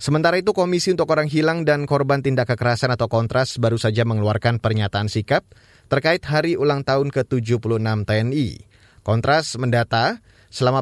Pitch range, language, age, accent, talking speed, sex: 115-145 Hz, Indonesian, 20-39, native, 145 wpm, male